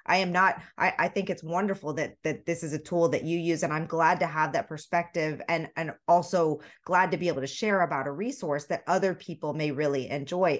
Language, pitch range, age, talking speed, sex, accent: English, 150-180 Hz, 20-39, 240 wpm, female, American